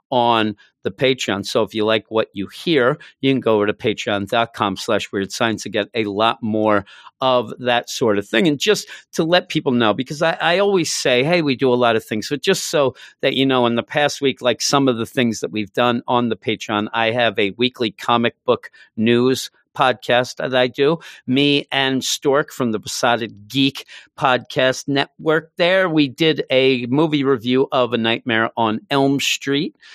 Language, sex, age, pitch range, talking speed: English, male, 50-69, 105-135 Hz, 200 wpm